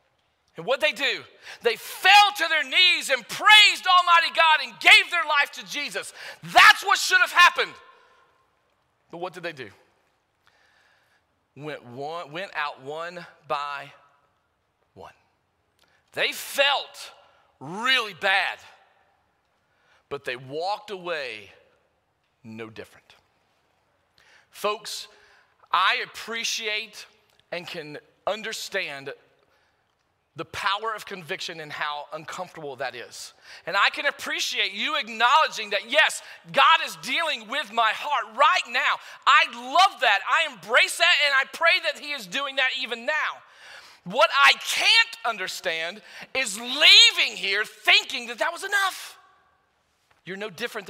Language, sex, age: English, male, 40-59